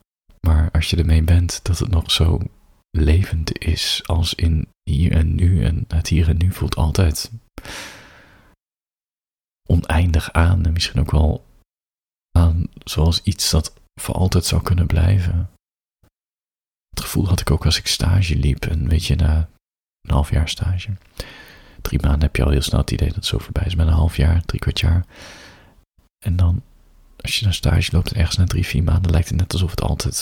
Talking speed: 185 wpm